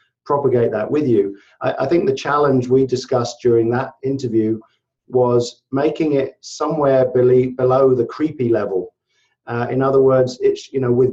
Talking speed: 160 wpm